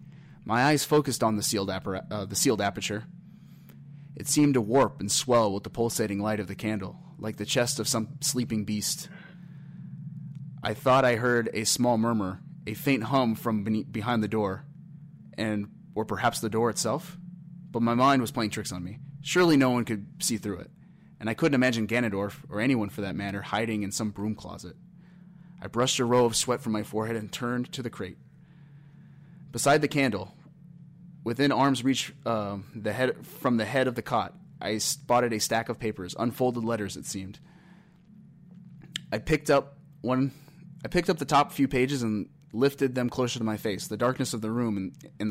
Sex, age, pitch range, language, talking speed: male, 30-49, 110-145 Hz, English, 190 wpm